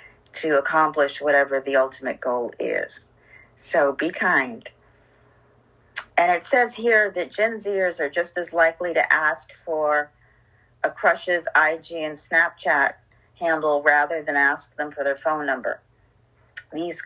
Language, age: English, 40-59